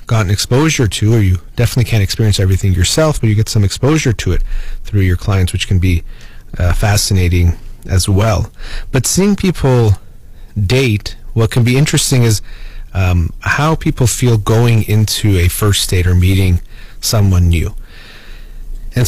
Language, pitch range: Persian, 95-120 Hz